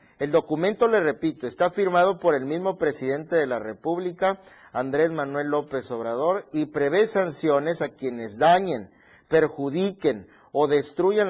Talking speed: 140 wpm